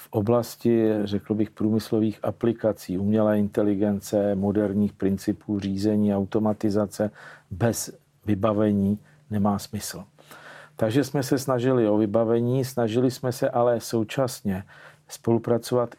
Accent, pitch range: native, 105-120 Hz